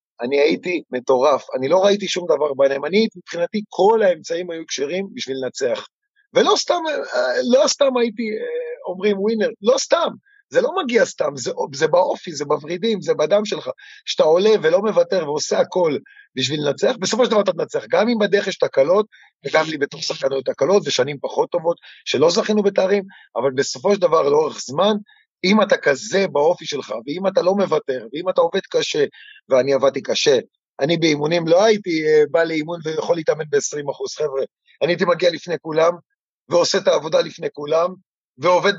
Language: Hebrew